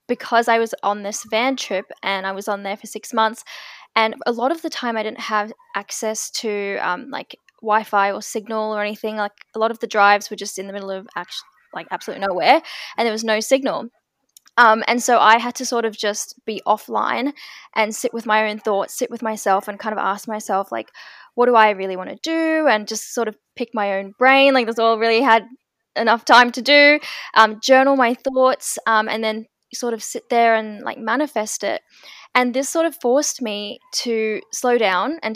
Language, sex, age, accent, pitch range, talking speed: English, female, 10-29, Australian, 210-240 Hz, 215 wpm